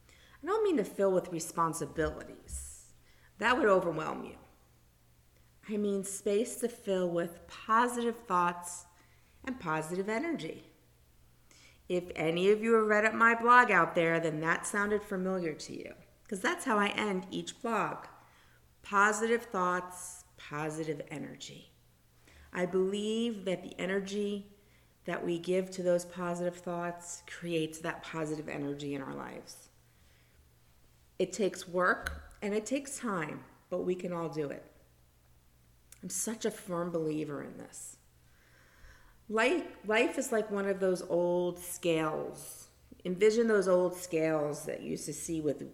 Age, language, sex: 40-59, English, female